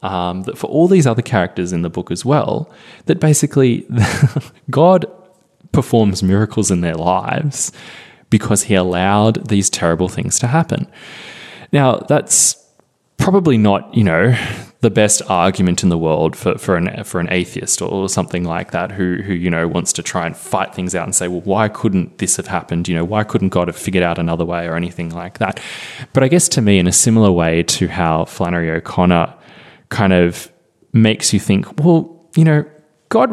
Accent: Australian